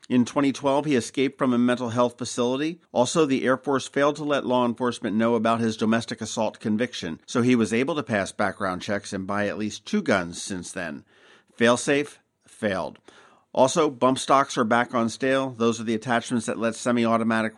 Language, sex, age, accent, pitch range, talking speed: English, male, 50-69, American, 110-130 Hz, 190 wpm